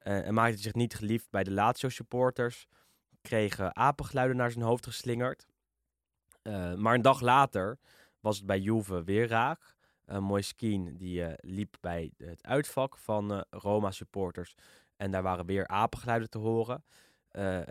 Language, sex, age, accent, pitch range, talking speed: Dutch, male, 10-29, Dutch, 95-120 Hz, 160 wpm